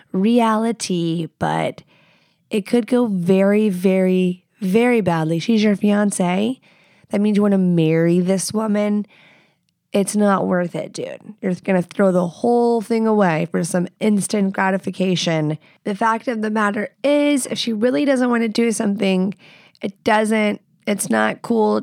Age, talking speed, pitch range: 20-39, 155 wpm, 180-210 Hz